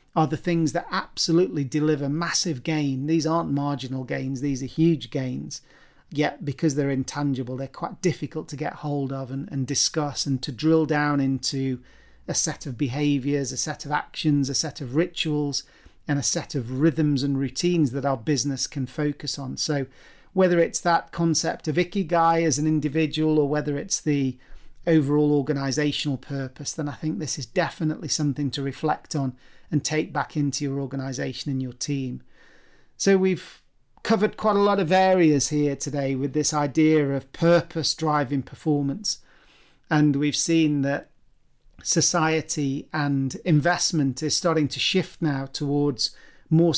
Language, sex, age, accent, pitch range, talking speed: English, male, 40-59, British, 140-160 Hz, 165 wpm